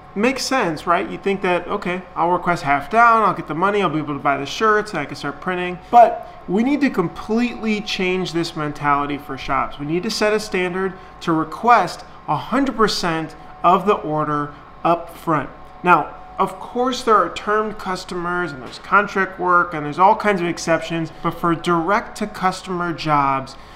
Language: English